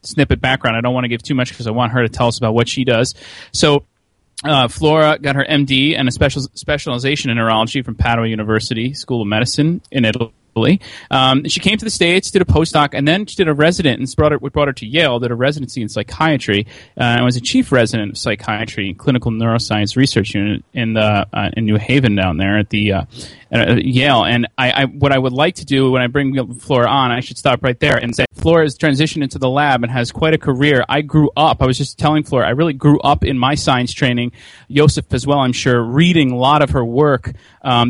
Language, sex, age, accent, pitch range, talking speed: English, male, 30-49, American, 120-145 Hz, 240 wpm